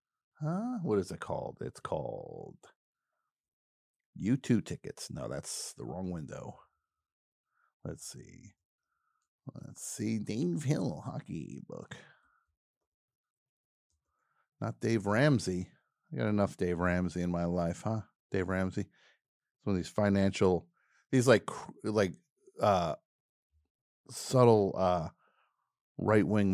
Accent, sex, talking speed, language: American, male, 110 wpm, English